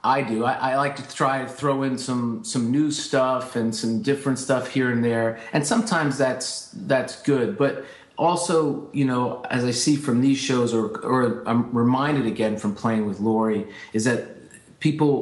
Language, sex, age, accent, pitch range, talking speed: English, male, 40-59, American, 120-145 Hz, 190 wpm